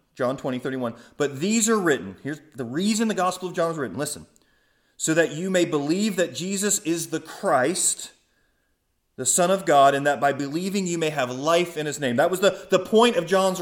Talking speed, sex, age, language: 215 wpm, male, 30-49, English